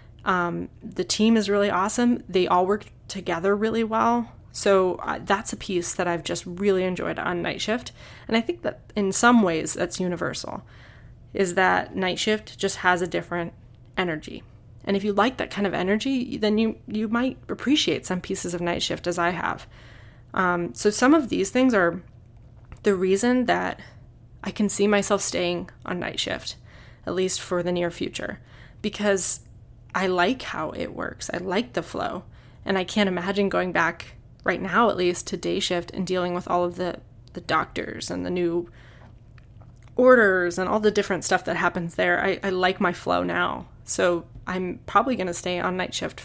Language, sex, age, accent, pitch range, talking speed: English, female, 20-39, American, 165-205 Hz, 190 wpm